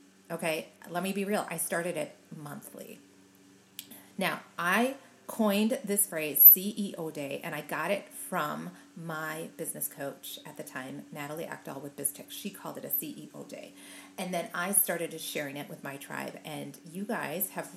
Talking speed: 170 wpm